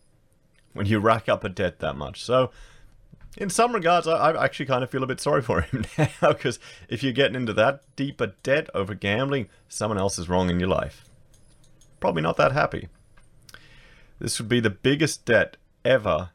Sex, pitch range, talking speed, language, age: male, 90-115 Hz, 190 wpm, English, 30-49